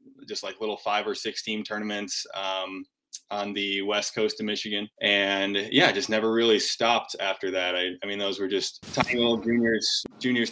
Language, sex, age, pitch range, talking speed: English, male, 20-39, 100-115 Hz, 190 wpm